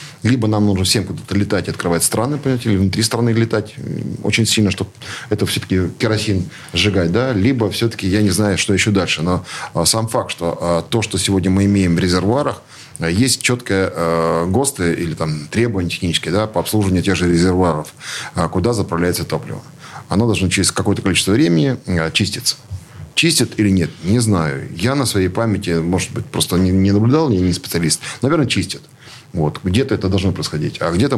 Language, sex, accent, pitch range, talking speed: Russian, male, native, 85-110 Hz, 170 wpm